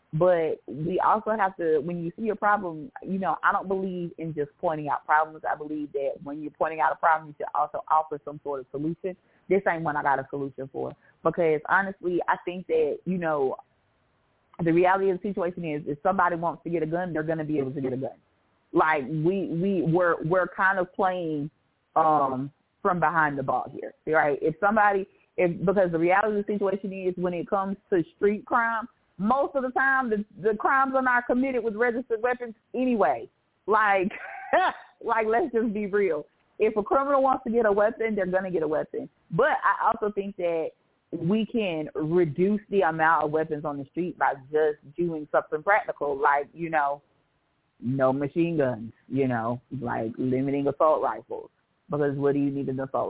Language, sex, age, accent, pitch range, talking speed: English, female, 30-49, American, 145-205 Hz, 200 wpm